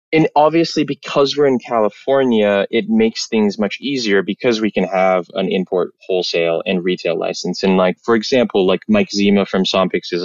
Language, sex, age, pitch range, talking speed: English, male, 20-39, 100-135 Hz, 180 wpm